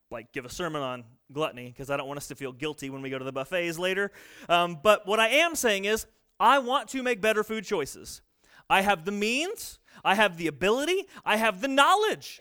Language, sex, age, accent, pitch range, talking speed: English, male, 30-49, American, 180-260 Hz, 225 wpm